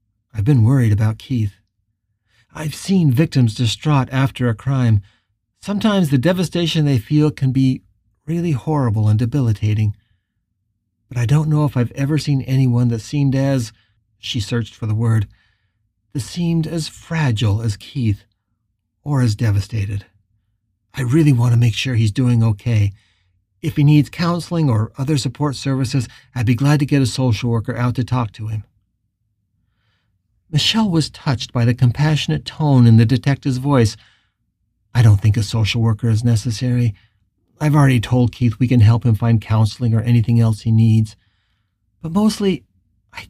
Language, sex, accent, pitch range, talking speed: English, male, American, 105-140 Hz, 160 wpm